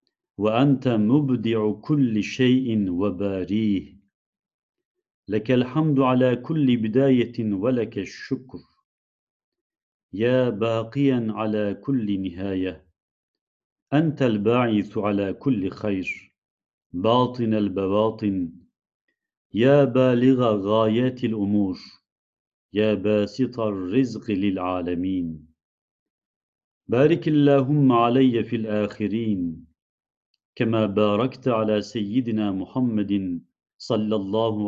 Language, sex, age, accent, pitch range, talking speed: Turkish, male, 50-69, native, 100-125 Hz, 75 wpm